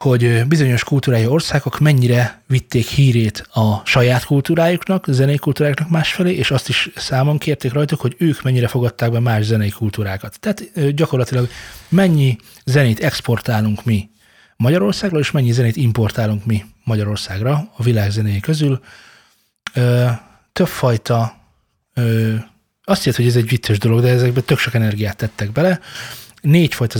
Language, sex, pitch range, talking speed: Hungarian, male, 110-145 Hz, 135 wpm